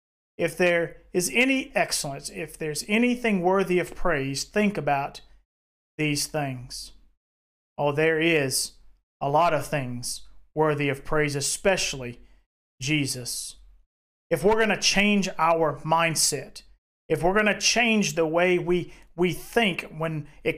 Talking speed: 135 wpm